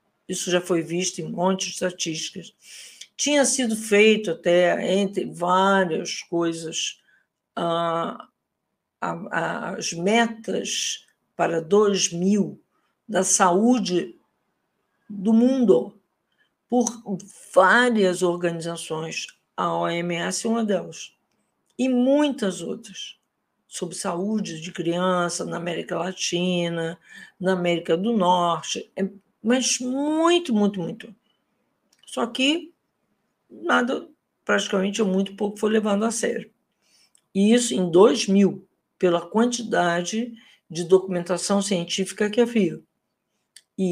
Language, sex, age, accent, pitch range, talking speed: Portuguese, female, 60-79, Brazilian, 180-225 Hz, 95 wpm